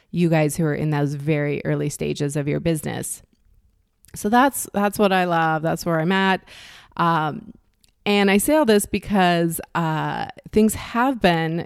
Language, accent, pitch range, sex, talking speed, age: English, American, 165-205 Hz, female, 170 wpm, 30-49